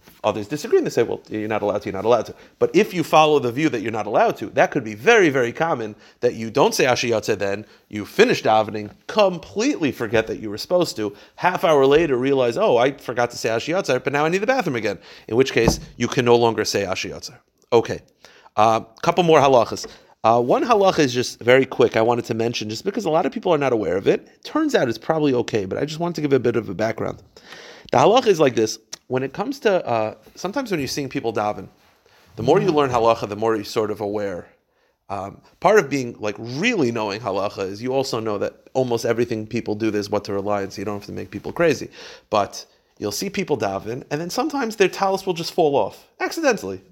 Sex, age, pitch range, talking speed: male, 40-59, 110-170 Hz, 240 wpm